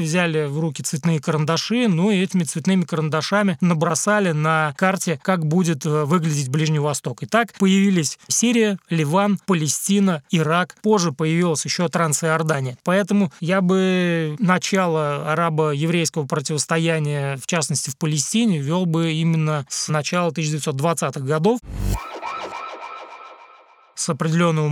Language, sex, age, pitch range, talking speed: Russian, male, 20-39, 155-185 Hz, 120 wpm